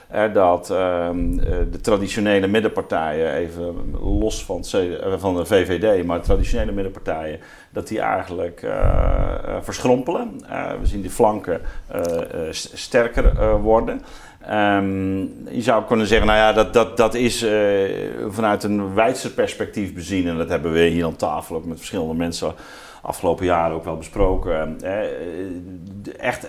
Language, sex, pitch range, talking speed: Dutch, male, 85-100 Hz, 145 wpm